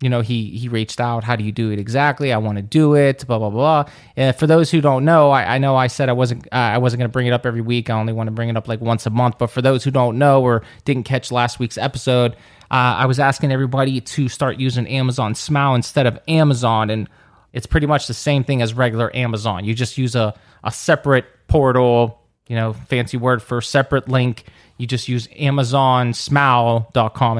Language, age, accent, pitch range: English, 30-49, American, 115-140 Hz